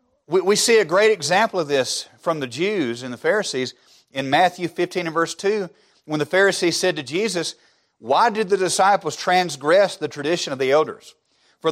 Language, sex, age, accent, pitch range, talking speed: English, male, 40-59, American, 145-185 Hz, 185 wpm